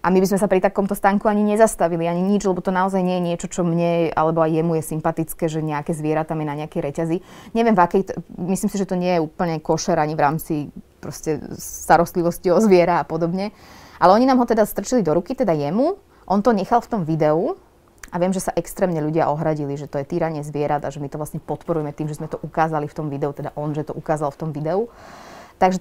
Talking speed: 240 wpm